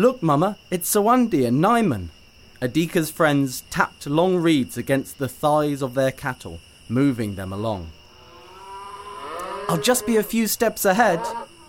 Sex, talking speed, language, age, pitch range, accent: male, 140 wpm, English, 30-49, 100-165 Hz, British